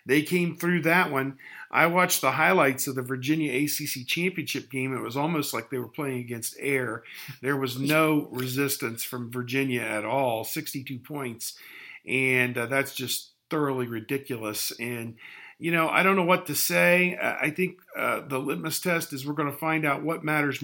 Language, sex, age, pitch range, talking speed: English, male, 50-69, 125-160 Hz, 185 wpm